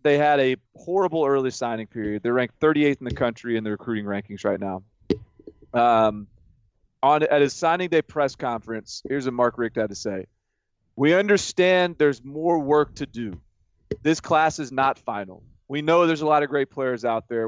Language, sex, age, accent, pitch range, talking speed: English, male, 30-49, American, 115-145 Hz, 190 wpm